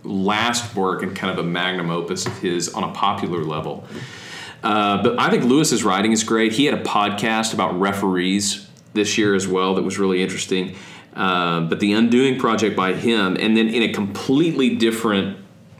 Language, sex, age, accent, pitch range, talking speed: English, male, 40-59, American, 95-115 Hz, 185 wpm